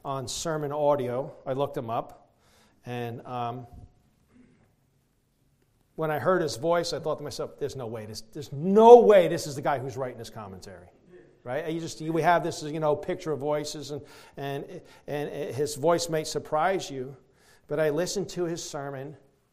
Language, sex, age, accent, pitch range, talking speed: English, male, 40-59, American, 120-170 Hz, 180 wpm